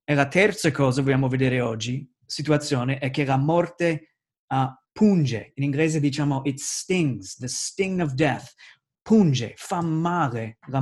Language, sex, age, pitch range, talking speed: Italian, male, 20-39, 130-155 Hz, 145 wpm